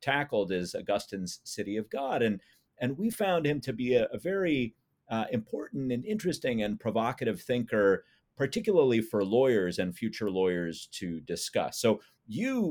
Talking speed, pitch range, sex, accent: 155 wpm, 95-120 Hz, male, American